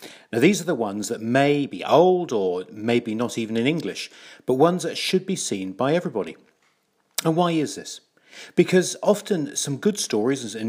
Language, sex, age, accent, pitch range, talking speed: English, male, 40-59, British, 110-160 Hz, 185 wpm